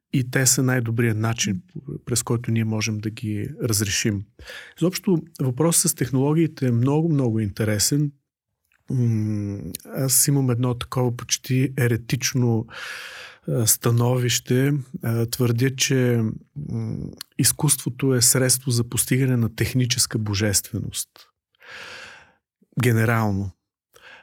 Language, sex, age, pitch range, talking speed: Bulgarian, male, 40-59, 115-140 Hz, 95 wpm